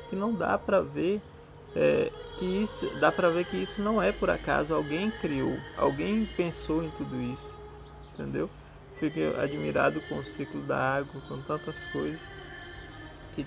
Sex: male